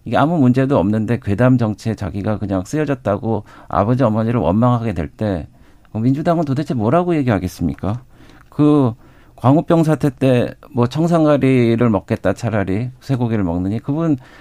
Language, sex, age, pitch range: Korean, male, 50-69, 110-140 Hz